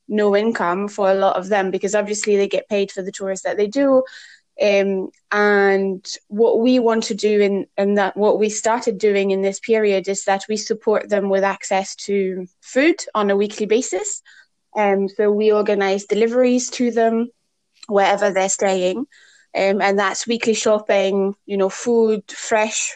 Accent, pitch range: British, 190-215 Hz